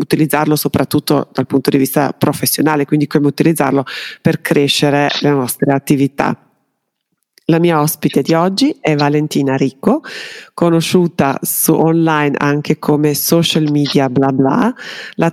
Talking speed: 130 wpm